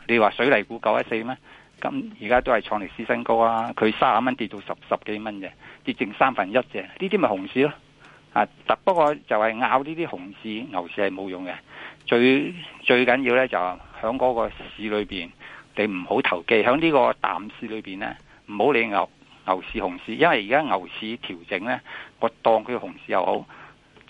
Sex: male